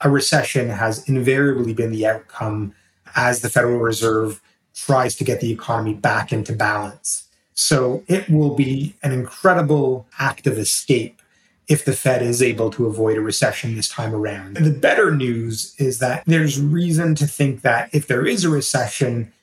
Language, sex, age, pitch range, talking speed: English, male, 30-49, 115-140 Hz, 170 wpm